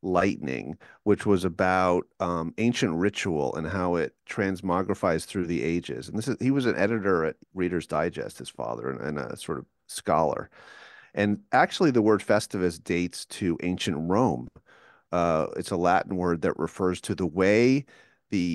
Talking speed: 170 wpm